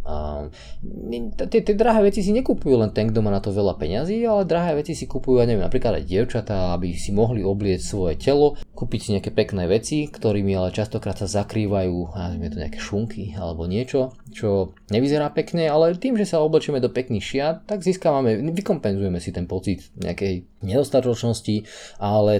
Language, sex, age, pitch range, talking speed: Slovak, male, 20-39, 95-125 Hz, 175 wpm